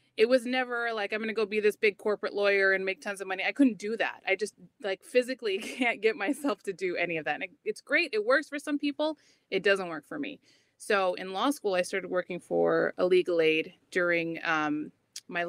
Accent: American